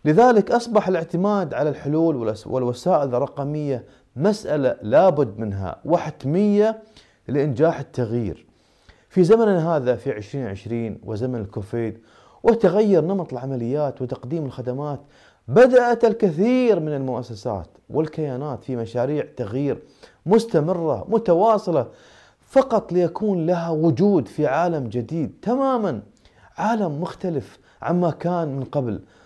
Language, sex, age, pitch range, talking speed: Arabic, male, 30-49, 130-195 Hz, 100 wpm